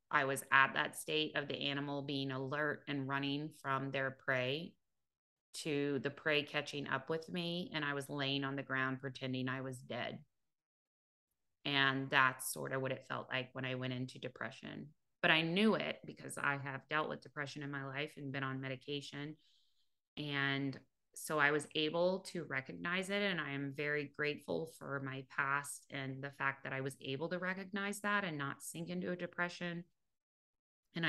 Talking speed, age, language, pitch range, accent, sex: 185 wpm, 30-49, English, 135-150 Hz, American, female